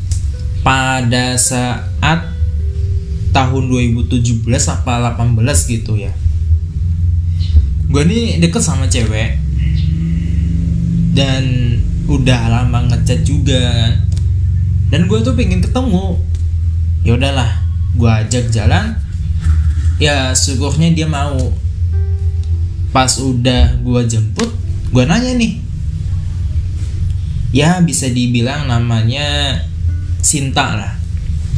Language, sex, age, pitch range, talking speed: Indonesian, male, 20-39, 85-115 Hz, 85 wpm